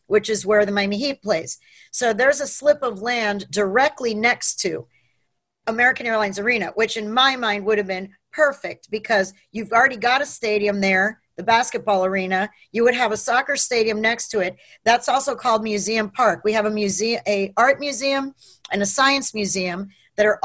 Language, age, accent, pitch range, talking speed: English, 40-59, American, 210-250 Hz, 190 wpm